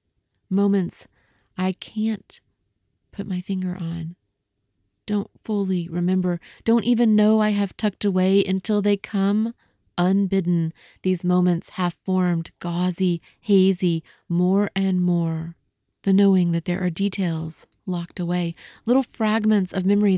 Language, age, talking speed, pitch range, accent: English, 30-49, 125 wpm, 165-195 Hz, American